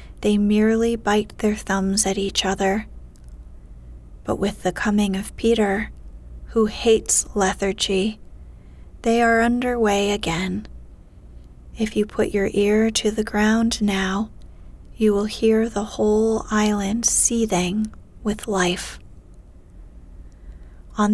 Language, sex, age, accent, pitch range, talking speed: English, female, 30-49, American, 195-225 Hz, 115 wpm